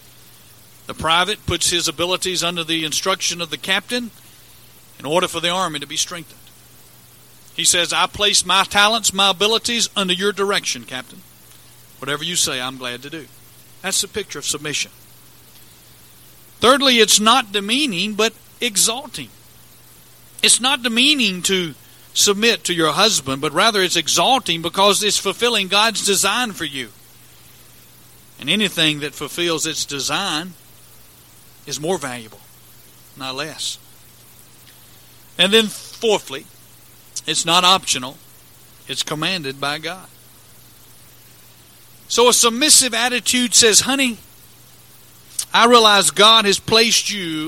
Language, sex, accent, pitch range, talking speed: English, male, American, 155-220 Hz, 130 wpm